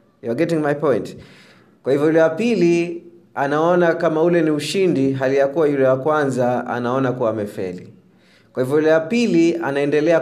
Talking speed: 145 wpm